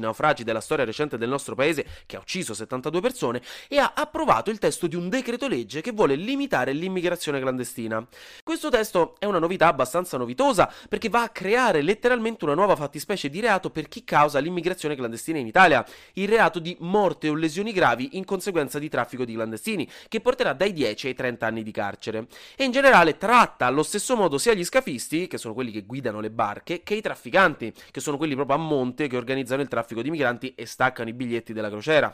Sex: male